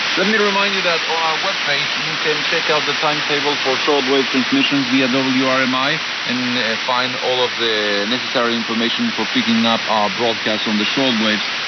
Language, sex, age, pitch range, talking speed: English, male, 50-69, 110-165 Hz, 175 wpm